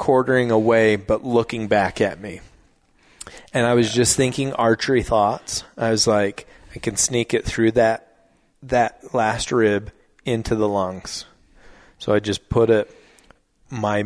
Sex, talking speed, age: male, 150 wpm, 30-49